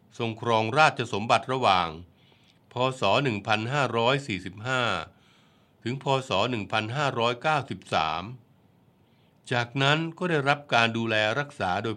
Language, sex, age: Thai, male, 60-79